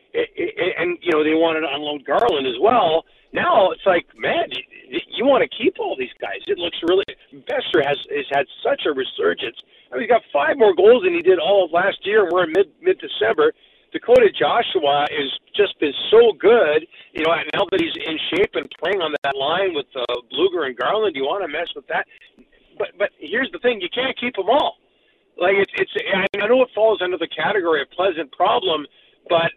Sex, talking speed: male, 215 wpm